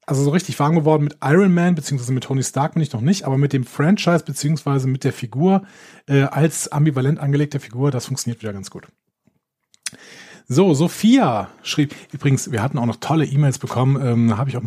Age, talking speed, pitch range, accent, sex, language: 40-59, 200 wpm, 125-155 Hz, German, male, German